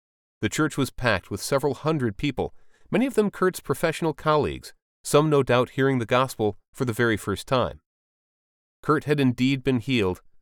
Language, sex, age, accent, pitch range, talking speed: English, male, 30-49, American, 110-165 Hz, 175 wpm